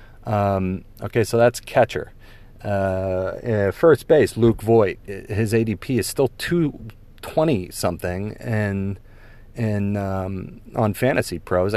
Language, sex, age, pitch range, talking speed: English, male, 30-49, 95-115 Hz, 105 wpm